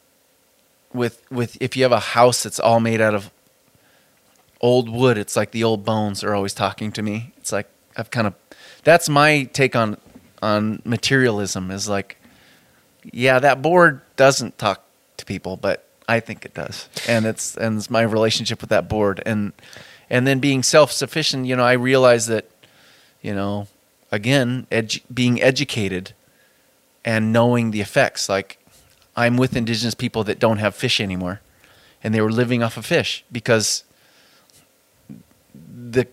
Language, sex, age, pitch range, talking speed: English, male, 30-49, 110-130 Hz, 165 wpm